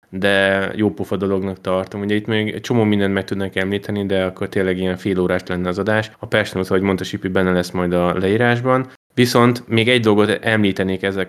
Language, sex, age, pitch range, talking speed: Hungarian, male, 20-39, 95-110 Hz, 205 wpm